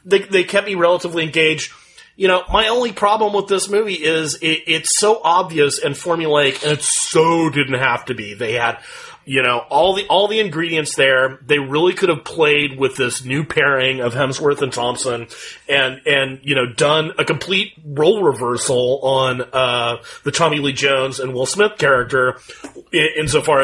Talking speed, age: 180 wpm, 30-49